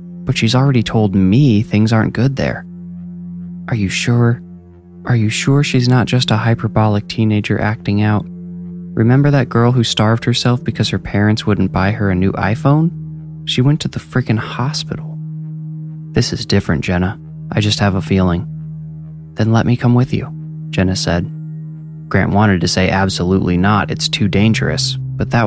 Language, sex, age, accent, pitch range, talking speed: English, male, 20-39, American, 95-130 Hz, 170 wpm